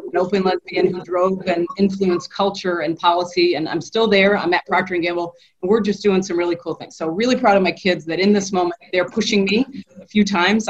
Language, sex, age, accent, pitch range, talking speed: English, female, 40-59, American, 170-200 Hz, 240 wpm